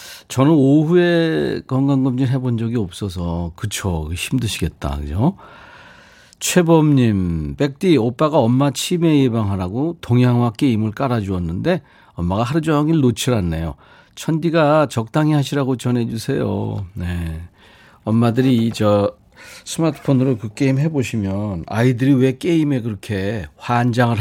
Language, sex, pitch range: Korean, male, 100-145 Hz